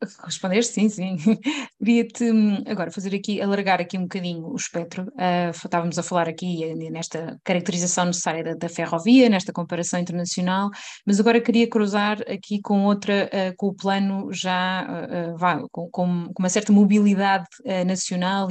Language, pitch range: Portuguese, 180-210 Hz